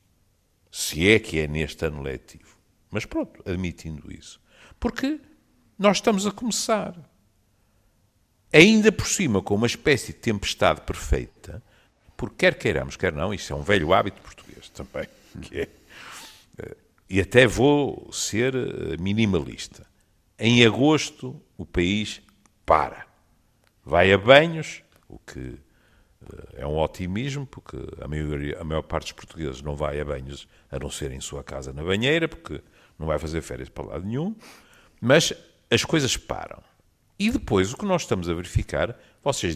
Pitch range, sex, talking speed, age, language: 80-115 Hz, male, 145 wpm, 60-79, Portuguese